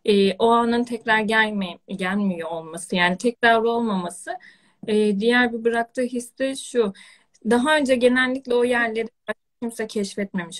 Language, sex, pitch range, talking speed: Turkish, female, 195-230 Hz, 135 wpm